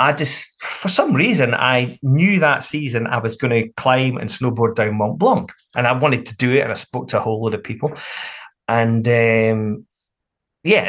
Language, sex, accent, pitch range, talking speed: English, male, British, 110-135 Hz, 205 wpm